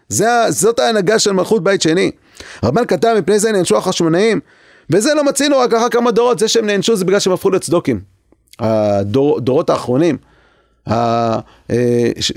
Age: 30-49